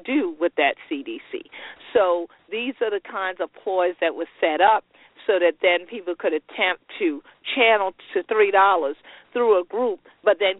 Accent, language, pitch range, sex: American, English, 160-225 Hz, female